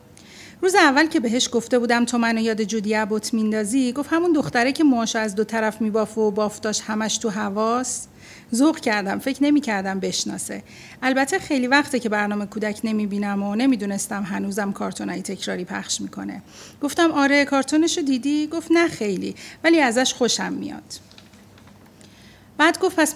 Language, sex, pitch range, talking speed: Persian, female, 210-285 Hz, 150 wpm